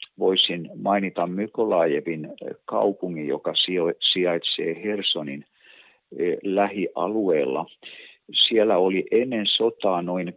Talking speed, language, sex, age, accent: 75 wpm, Finnish, male, 50-69, native